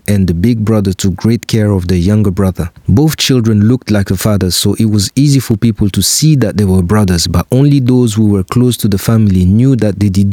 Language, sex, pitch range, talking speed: English, male, 95-120 Hz, 245 wpm